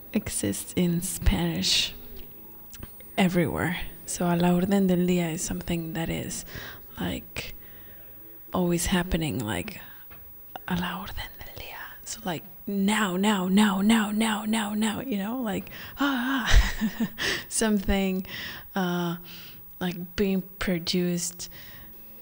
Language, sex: English, female